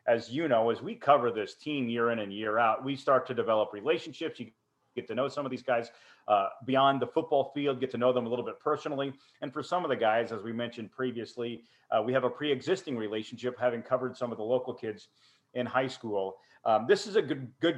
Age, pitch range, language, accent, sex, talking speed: 40-59, 120-150 Hz, English, American, male, 240 wpm